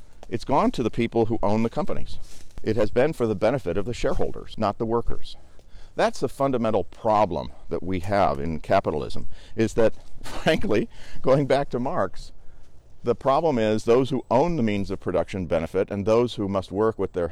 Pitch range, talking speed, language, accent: 85-115 Hz, 190 wpm, English, American